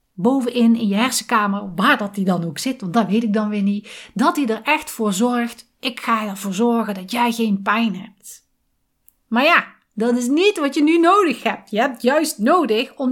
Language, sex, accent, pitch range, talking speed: Dutch, female, Dutch, 205-265 Hz, 215 wpm